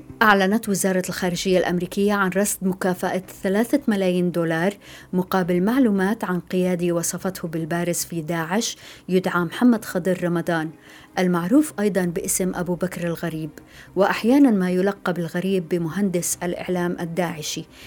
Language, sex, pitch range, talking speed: Arabic, female, 175-195 Hz, 120 wpm